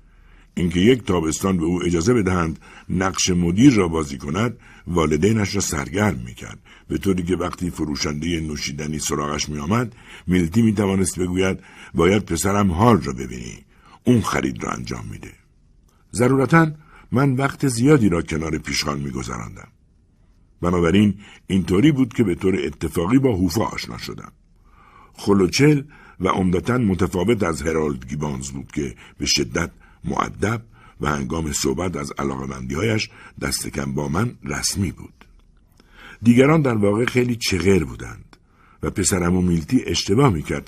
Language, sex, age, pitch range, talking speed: Persian, male, 60-79, 75-110 Hz, 135 wpm